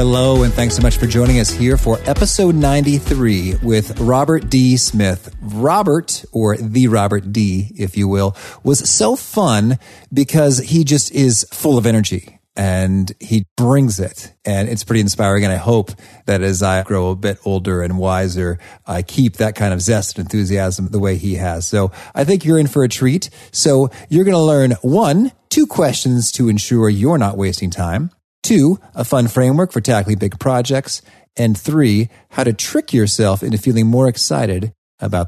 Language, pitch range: English, 100-130 Hz